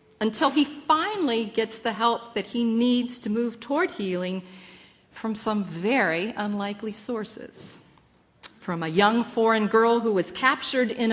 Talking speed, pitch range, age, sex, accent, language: 145 wpm, 195-265 Hz, 50-69, female, American, English